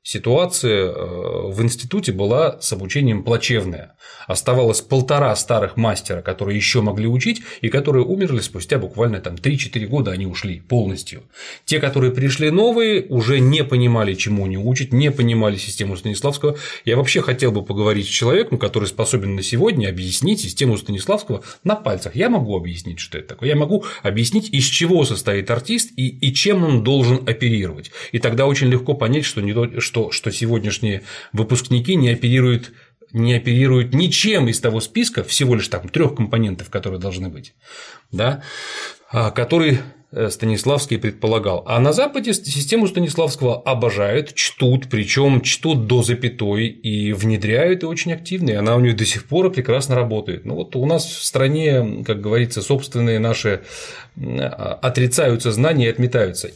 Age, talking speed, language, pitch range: 30-49, 150 wpm, Russian, 110-140 Hz